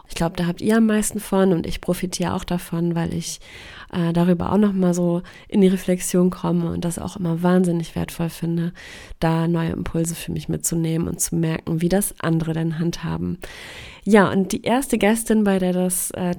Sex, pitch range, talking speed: female, 170-195 Hz, 200 wpm